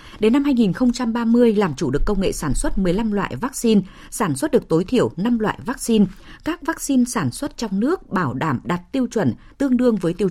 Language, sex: Vietnamese, female